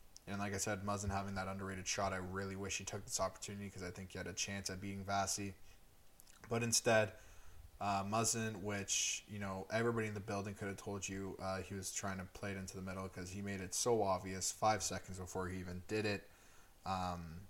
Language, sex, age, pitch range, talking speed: English, male, 20-39, 95-105 Hz, 225 wpm